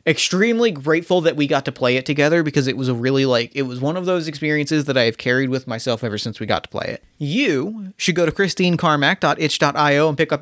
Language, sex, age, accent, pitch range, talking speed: English, male, 30-49, American, 145-200 Hz, 240 wpm